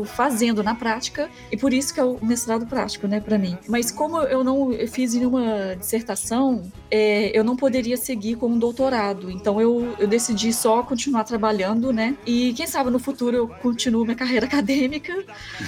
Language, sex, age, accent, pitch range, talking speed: Portuguese, female, 20-39, Brazilian, 215-250 Hz, 180 wpm